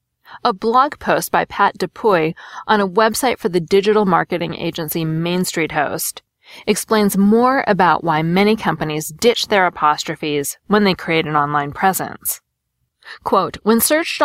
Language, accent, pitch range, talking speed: English, American, 165-225 Hz, 145 wpm